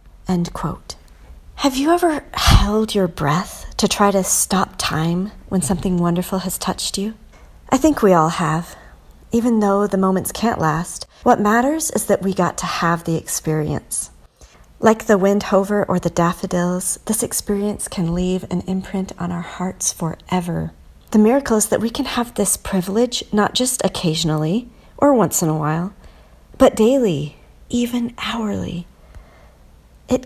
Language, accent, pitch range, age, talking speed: English, American, 165-210 Hz, 40-59, 155 wpm